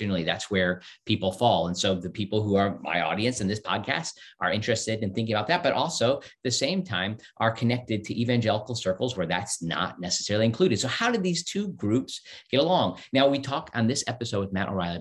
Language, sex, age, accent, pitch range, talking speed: English, male, 40-59, American, 95-120 Hz, 220 wpm